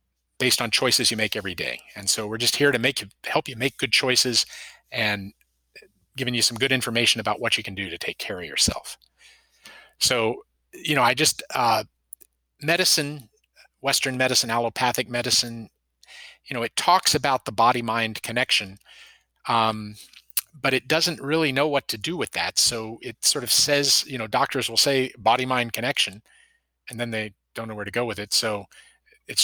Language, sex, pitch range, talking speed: English, male, 105-130 Hz, 185 wpm